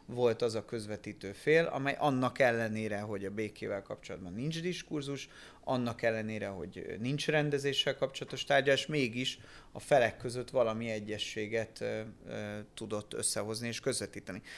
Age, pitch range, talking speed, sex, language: 30-49, 110-130 Hz, 130 wpm, male, Hungarian